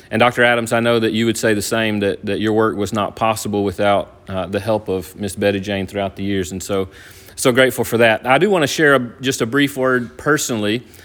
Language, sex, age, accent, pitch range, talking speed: English, male, 30-49, American, 100-120 Hz, 250 wpm